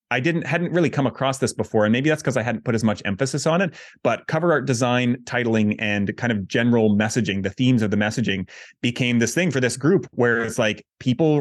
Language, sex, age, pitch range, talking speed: English, male, 30-49, 110-150 Hz, 235 wpm